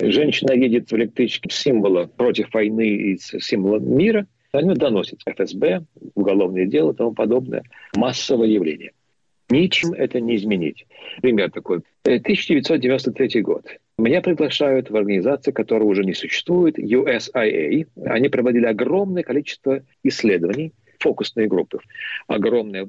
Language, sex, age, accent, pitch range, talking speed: Russian, male, 50-69, native, 110-150 Hz, 120 wpm